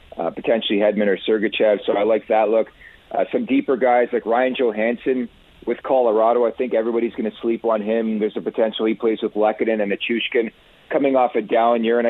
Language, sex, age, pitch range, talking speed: English, male, 40-59, 105-125 Hz, 210 wpm